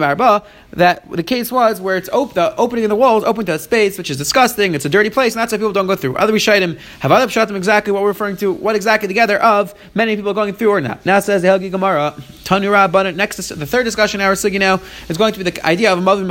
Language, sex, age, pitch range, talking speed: English, male, 30-49, 180-215 Hz, 260 wpm